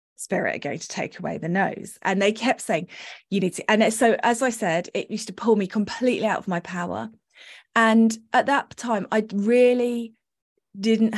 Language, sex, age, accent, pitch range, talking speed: English, female, 20-39, British, 185-220 Hz, 200 wpm